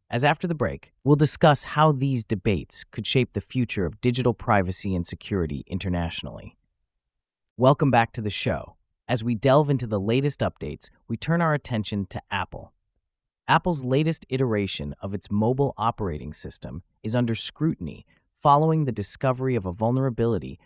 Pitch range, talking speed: 100-130 Hz, 155 wpm